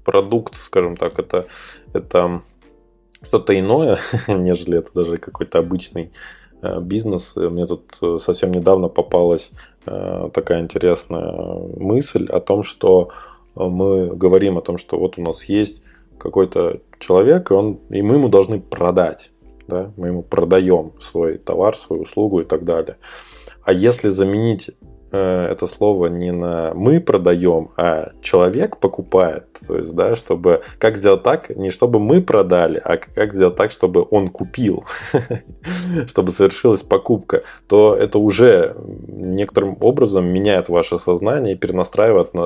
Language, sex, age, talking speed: Russian, male, 20-39, 135 wpm